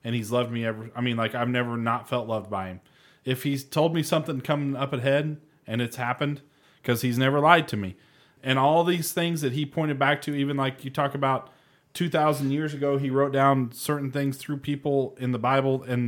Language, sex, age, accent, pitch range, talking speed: English, male, 30-49, American, 120-140 Hz, 225 wpm